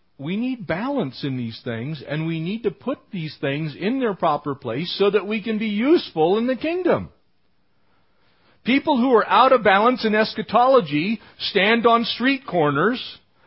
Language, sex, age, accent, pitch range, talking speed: English, male, 50-69, American, 150-215 Hz, 170 wpm